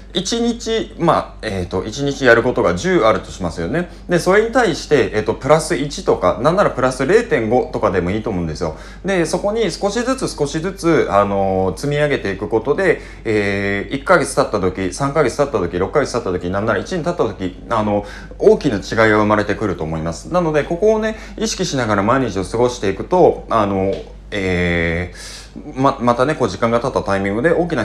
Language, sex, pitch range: Japanese, male, 95-150 Hz